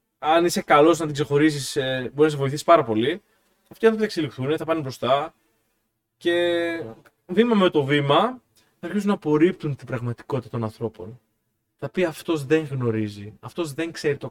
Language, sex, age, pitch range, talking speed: Greek, male, 20-39, 110-165 Hz, 170 wpm